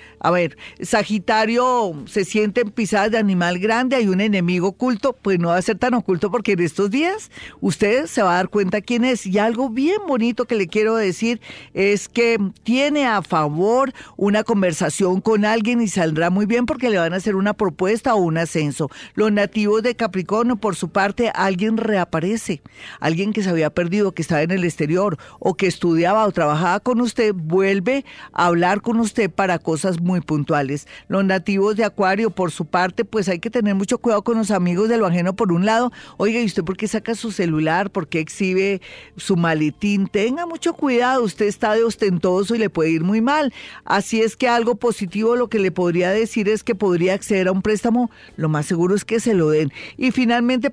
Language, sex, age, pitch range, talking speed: Spanish, female, 40-59, 185-230 Hz, 205 wpm